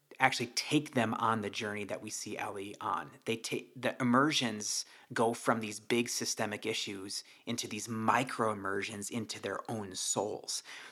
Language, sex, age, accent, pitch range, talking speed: English, male, 30-49, American, 110-125 Hz, 160 wpm